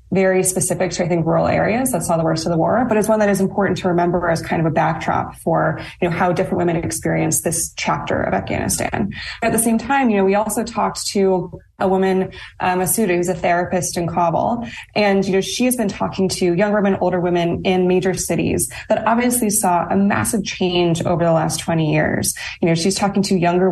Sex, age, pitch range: female, 20-39, 170-195 Hz